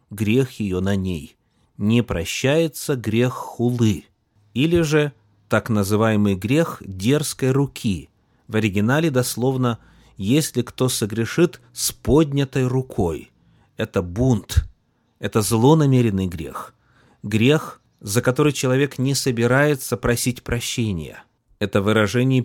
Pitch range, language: 105-130 Hz, Russian